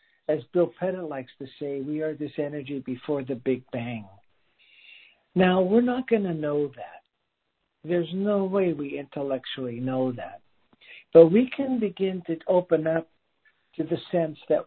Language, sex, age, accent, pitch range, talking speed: English, male, 60-79, American, 135-175 Hz, 160 wpm